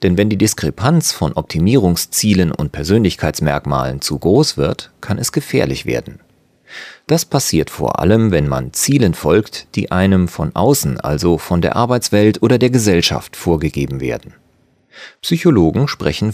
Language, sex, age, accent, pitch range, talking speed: German, male, 40-59, German, 85-115 Hz, 140 wpm